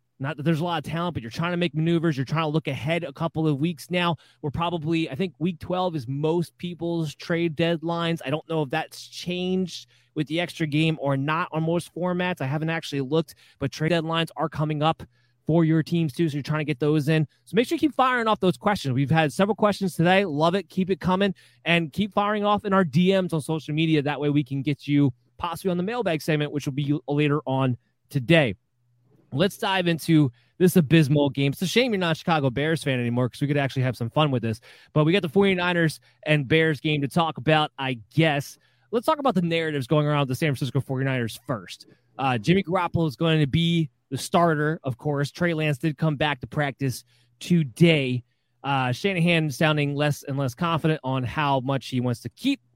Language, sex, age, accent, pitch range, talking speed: English, male, 20-39, American, 135-170 Hz, 225 wpm